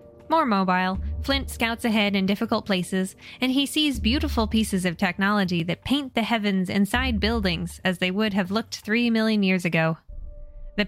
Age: 20-39